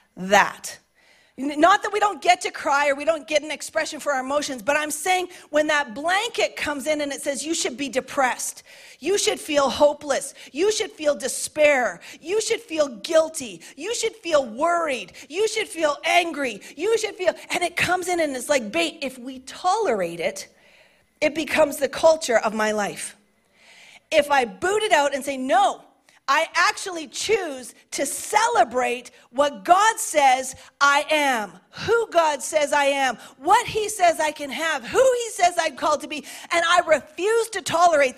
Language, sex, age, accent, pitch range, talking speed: English, female, 40-59, American, 285-365 Hz, 180 wpm